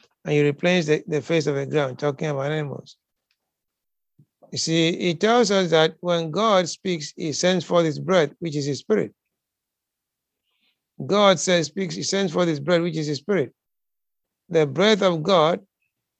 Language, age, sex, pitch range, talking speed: English, 60-79, male, 150-175 Hz, 170 wpm